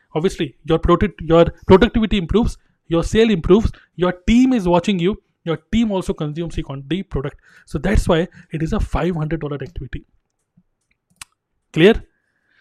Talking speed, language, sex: 150 wpm, Hindi, male